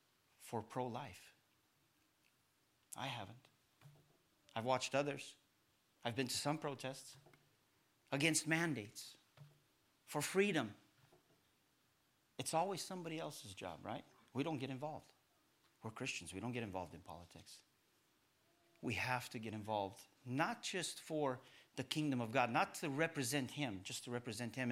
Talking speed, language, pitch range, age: 135 wpm, English, 125-170 Hz, 50-69